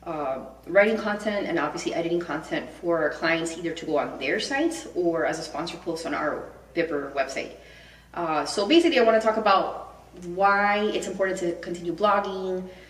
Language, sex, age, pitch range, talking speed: English, female, 20-39, 165-195 Hz, 175 wpm